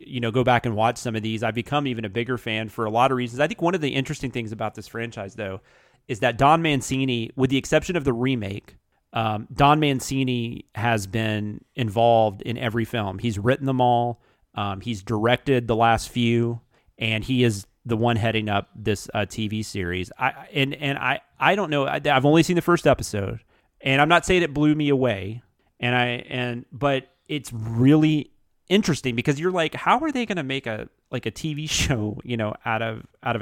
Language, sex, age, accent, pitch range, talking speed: English, male, 30-49, American, 115-145 Hz, 215 wpm